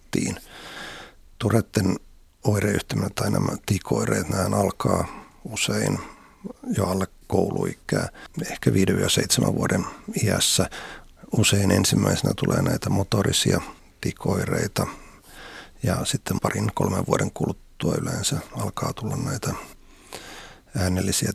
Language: Finnish